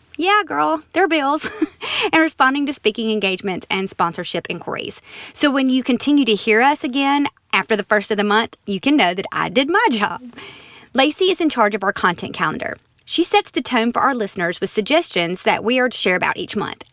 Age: 30-49